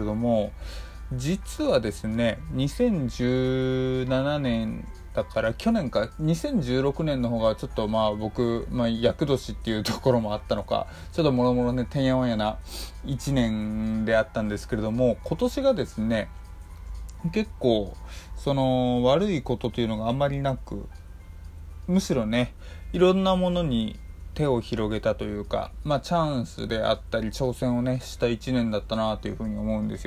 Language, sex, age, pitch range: Japanese, male, 20-39, 105-130 Hz